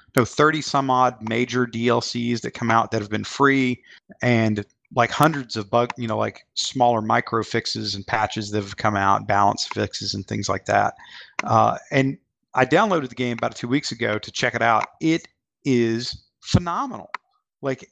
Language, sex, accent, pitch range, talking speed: English, male, American, 110-130 Hz, 180 wpm